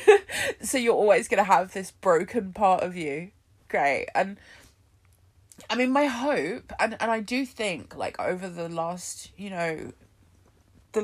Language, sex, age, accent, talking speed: English, female, 20-39, British, 160 wpm